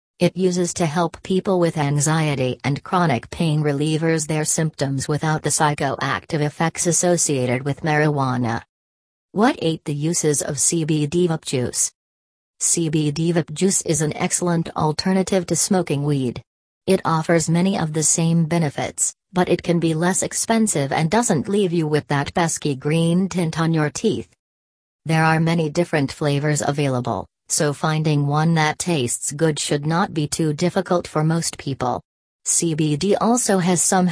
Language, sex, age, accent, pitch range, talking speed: English, female, 40-59, American, 145-175 Hz, 155 wpm